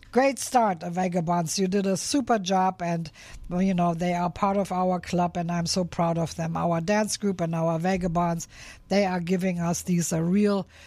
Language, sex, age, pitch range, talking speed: English, female, 60-79, 160-195 Hz, 205 wpm